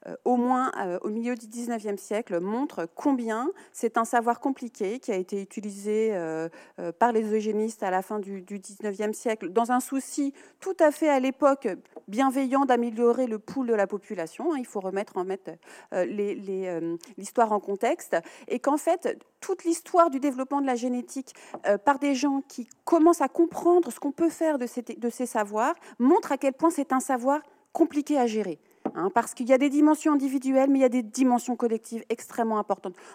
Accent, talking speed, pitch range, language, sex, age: French, 200 wpm, 225-300 Hz, French, female, 40-59